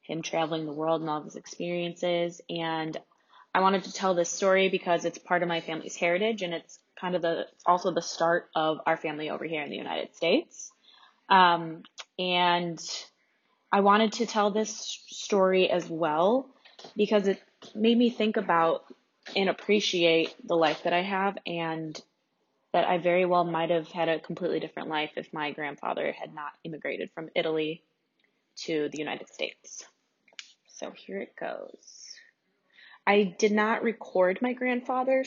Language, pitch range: English, 165-210 Hz